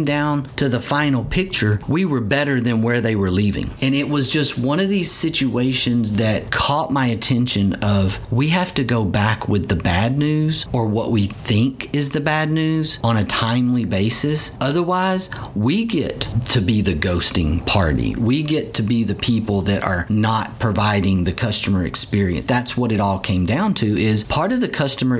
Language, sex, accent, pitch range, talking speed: English, male, American, 105-145 Hz, 190 wpm